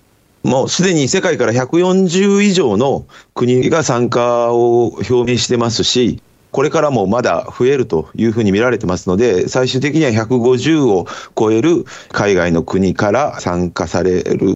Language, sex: Japanese, male